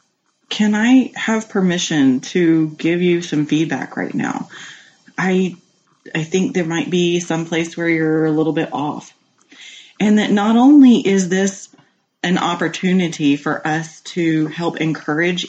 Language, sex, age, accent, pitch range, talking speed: English, female, 30-49, American, 155-200 Hz, 145 wpm